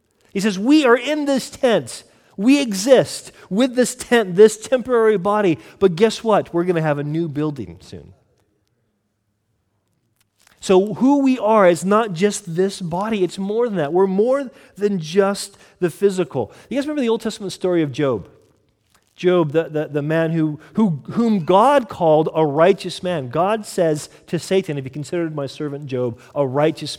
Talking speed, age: 175 wpm, 40-59